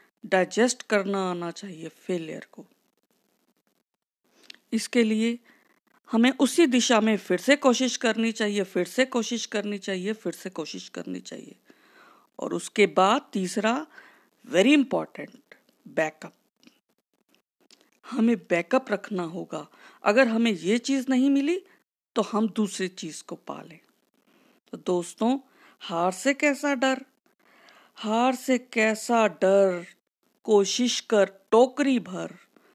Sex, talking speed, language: female, 115 wpm, Hindi